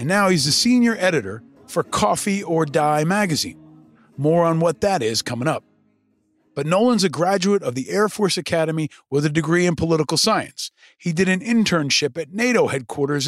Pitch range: 145-185 Hz